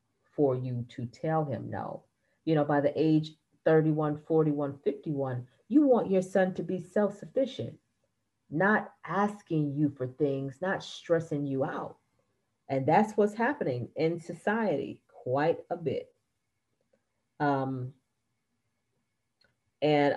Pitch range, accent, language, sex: 135-175 Hz, American, English, female